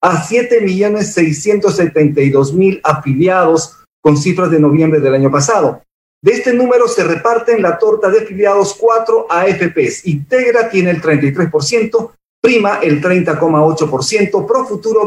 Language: Spanish